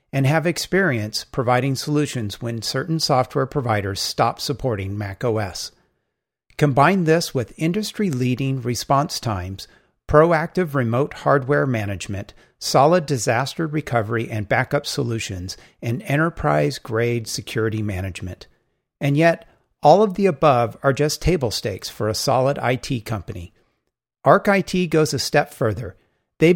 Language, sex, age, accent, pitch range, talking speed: English, male, 50-69, American, 115-155 Hz, 120 wpm